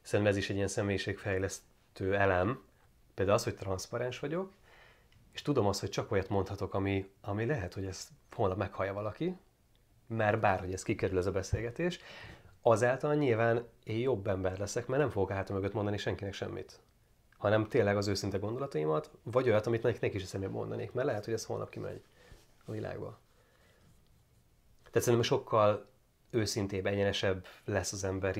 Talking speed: 160 wpm